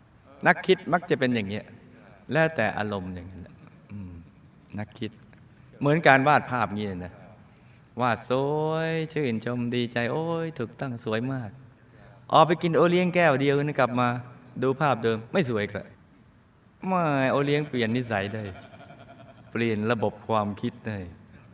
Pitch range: 100-135 Hz